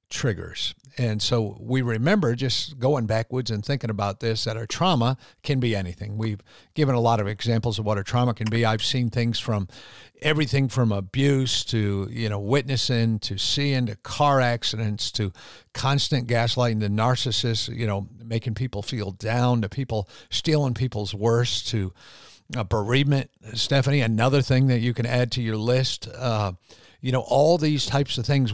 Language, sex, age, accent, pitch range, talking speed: English, male, 50-69, American, 110-135 Hz, 170 wpm